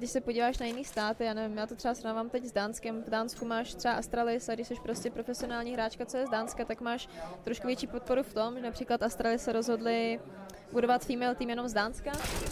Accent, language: native, Czech